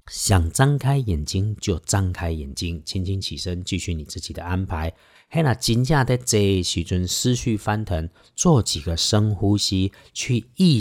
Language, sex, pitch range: Chinese, male, 85-110 Hz